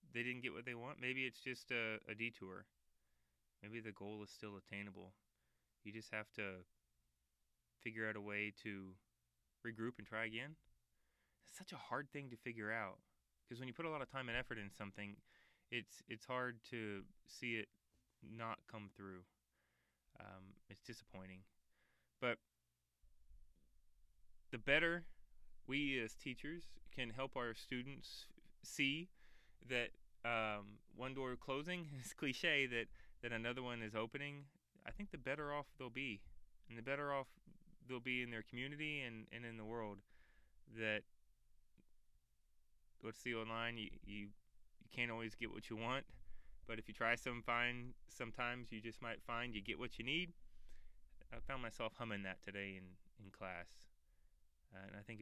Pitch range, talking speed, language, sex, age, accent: 95-125 Hz, 165 wpm, English, male, 20-39, American